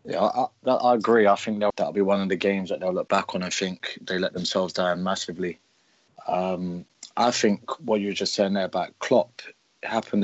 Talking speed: 215 wpm